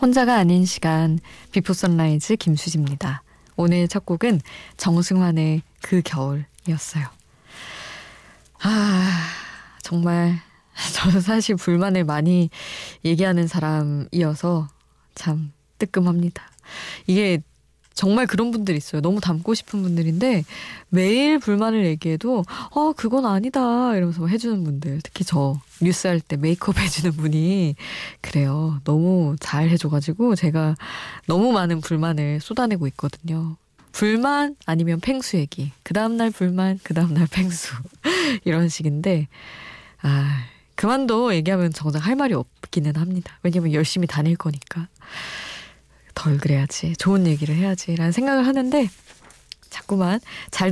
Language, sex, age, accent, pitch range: Korean, female, 20-39, native, 155-195 Hz